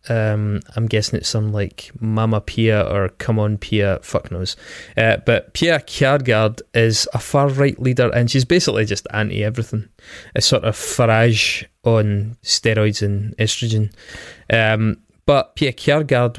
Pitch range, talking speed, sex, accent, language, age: 110-130 Hz, 150 wpm, male, British, English, 20-39